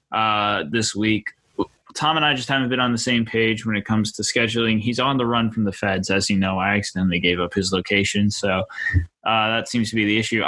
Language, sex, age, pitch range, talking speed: English, male, 20-39, 100-125 Hz, 240 wpm